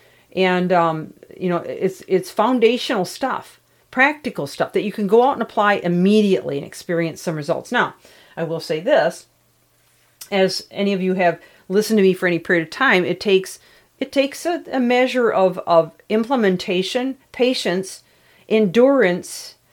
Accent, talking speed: American, 160 wpm